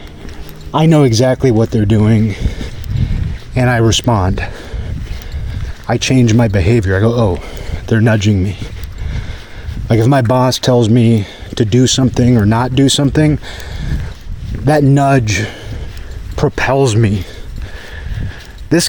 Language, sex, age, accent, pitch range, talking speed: English, male, 30-49, American, 100-125 Hz, 120 wpm